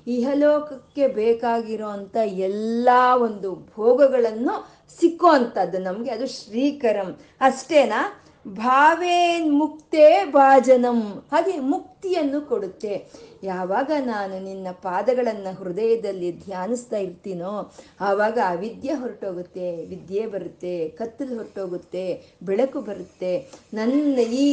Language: Kannada